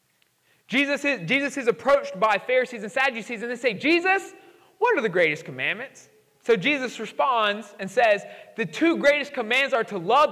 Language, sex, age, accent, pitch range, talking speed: English, male, 30-49, American, 185-275 Hz, 170 wpm